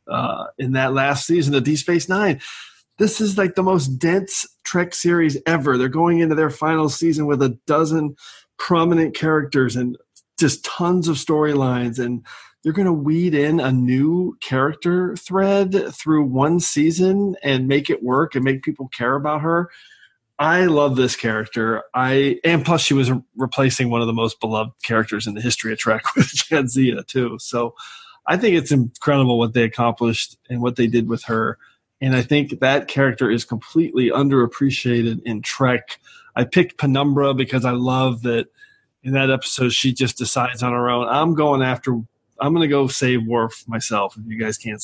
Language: English